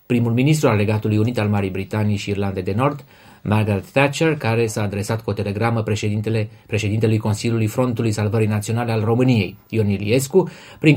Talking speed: 170 wpm